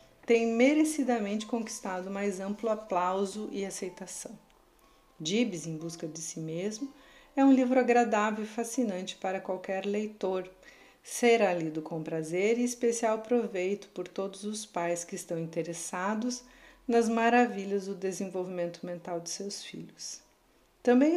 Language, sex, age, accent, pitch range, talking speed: Portuguese, female, 50-69, Brazilian, 180-230 Hz, 130 wpm